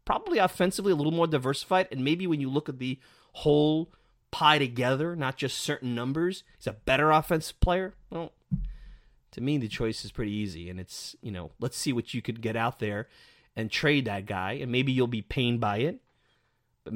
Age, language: 30-49, English